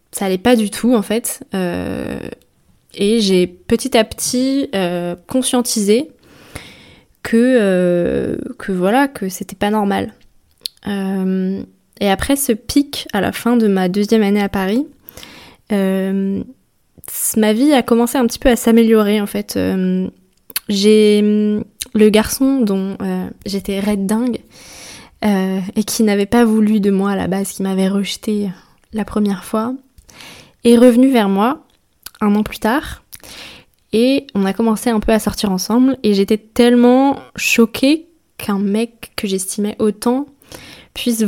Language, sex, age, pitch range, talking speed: French, female, 20-39, 195-235 Hz, 150 wpm